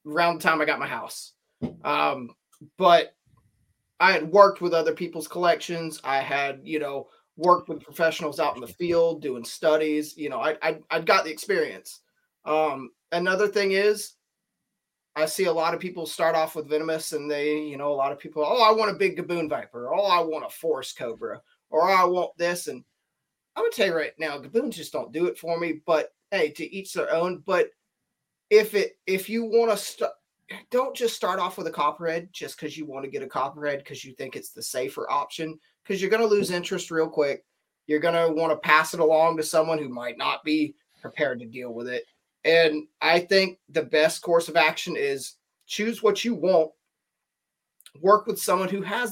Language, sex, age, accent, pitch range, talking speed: English, male, 30-49, American, 150-195 Hz, 210 wpm